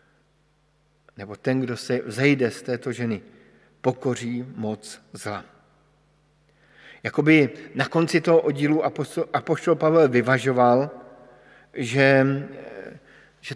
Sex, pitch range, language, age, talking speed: male, 115-140 Hz, Slovak, 50-69, 95 wpm